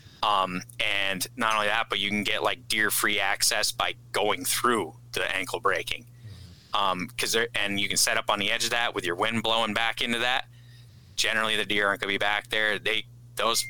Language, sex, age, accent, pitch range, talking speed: English, male, 30-49, American, 105-120 Hz, 220 wpm